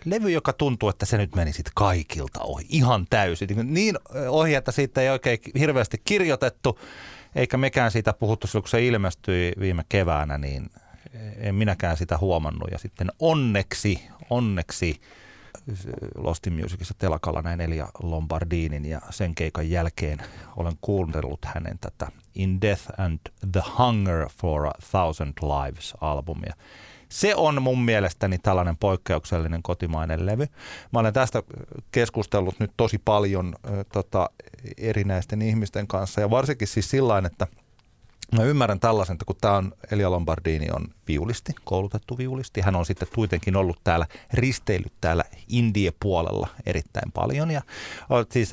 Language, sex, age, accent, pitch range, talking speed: Finnish, male, 30-49, native, 85-115 Hz, 140 wpm